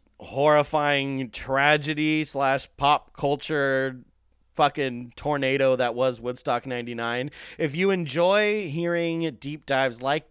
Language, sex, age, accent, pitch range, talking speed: English, male, 30-49, American, 120-150 Hz, 105 wpm